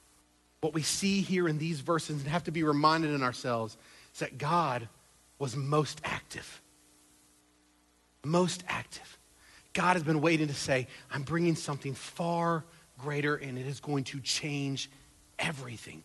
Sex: male